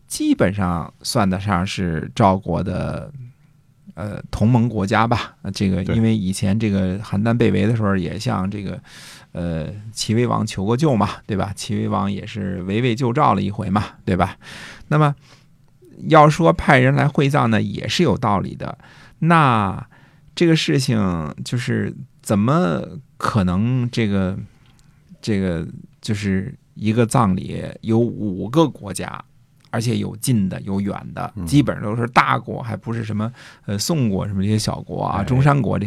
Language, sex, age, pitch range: Chinese, male, 50-69, 100-130 Hz